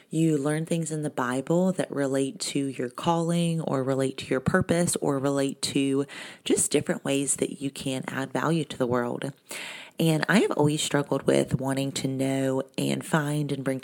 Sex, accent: female, American